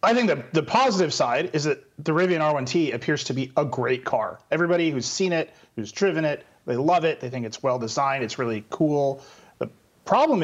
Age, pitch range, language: 30-49, 130-165 Hz, English